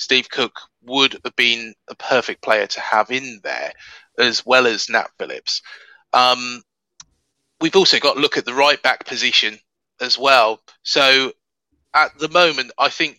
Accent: British